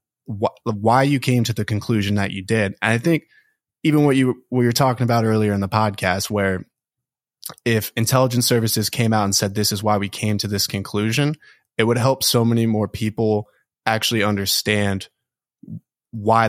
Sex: male